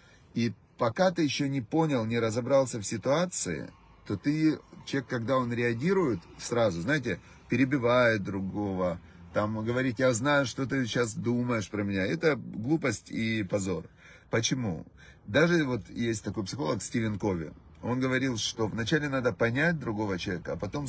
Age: 30-49